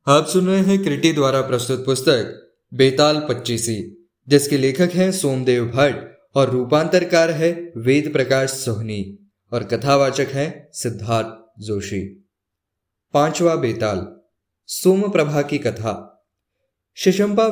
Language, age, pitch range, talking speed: Hindi, 20-39, 115-170 Hz, 115 wpm